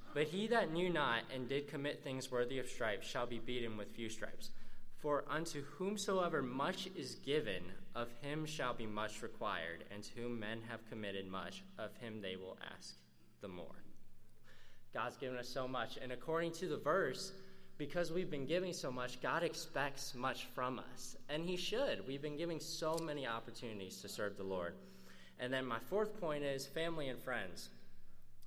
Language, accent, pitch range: English, American, 100-140 Hz